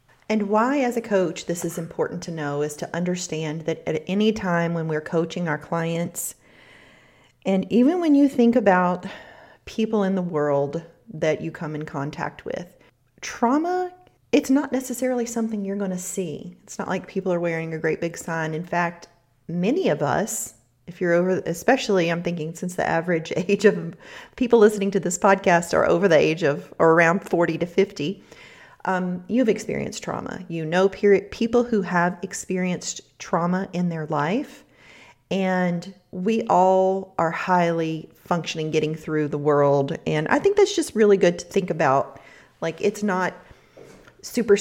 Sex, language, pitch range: female, English, 160-195 Hz